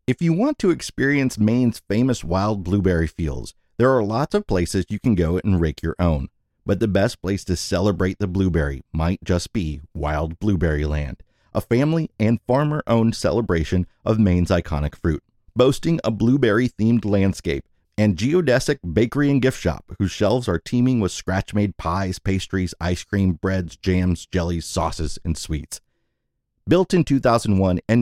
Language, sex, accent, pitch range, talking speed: English, male, American, 90-120 Hz, 160 wpm